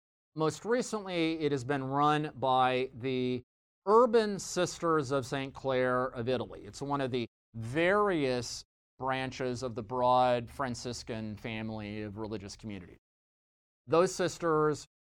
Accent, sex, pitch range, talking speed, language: American, male, 120-155 Hz, 125 wpm, English